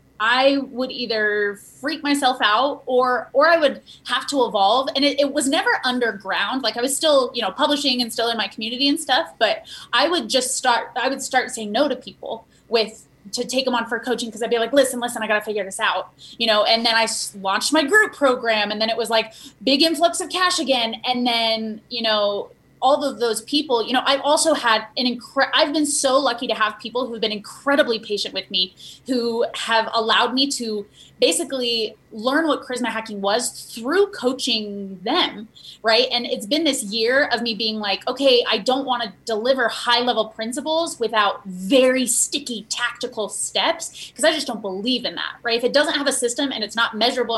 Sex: female